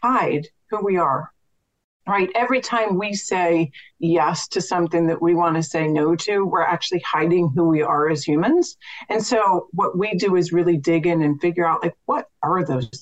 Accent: American